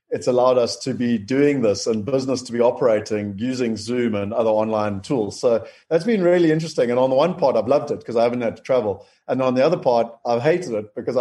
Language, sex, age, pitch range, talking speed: English, male, 30-49, 115-140 Hz, 245 wpm